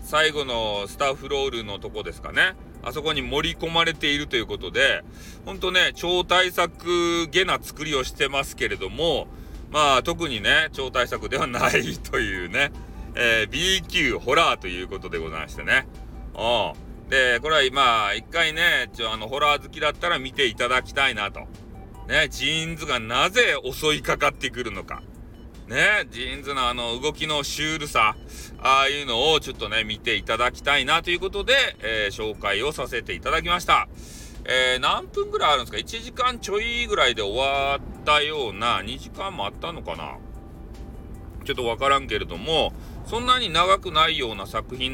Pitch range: 115-180 Hz